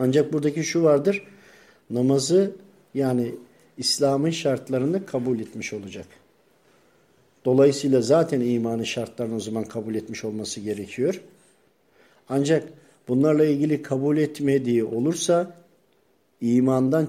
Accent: native